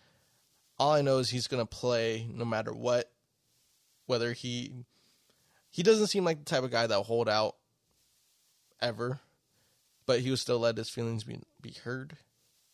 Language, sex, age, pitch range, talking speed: English, male, 20-39, 120-135 Hz, 170 wpm